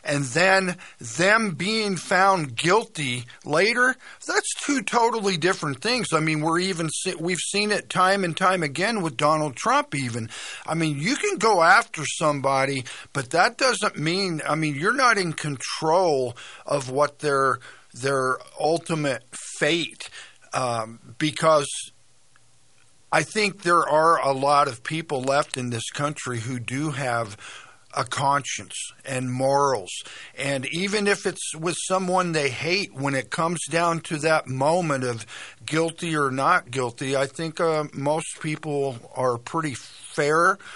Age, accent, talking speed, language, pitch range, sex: 50-69, American, 140 wpm, English, 135-175 Hz, male